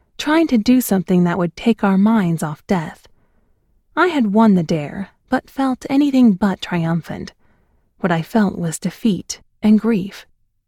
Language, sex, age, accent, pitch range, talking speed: English, female, 30-49, American, 175-240 Hz, 155 wpm